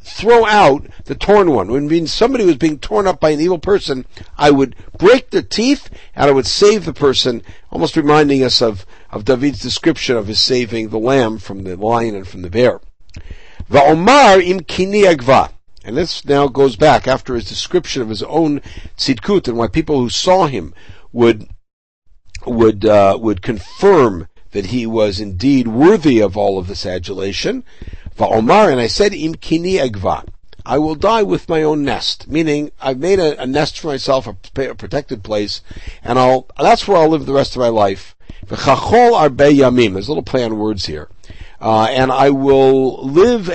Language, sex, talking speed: English, male, 175 wpm